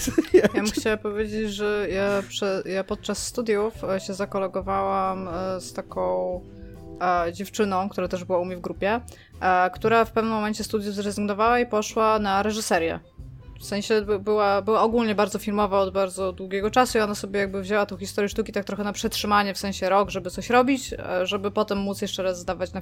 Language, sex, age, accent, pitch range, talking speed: Polish, female, 20-39, native, 195-225 Hz, 175 wpm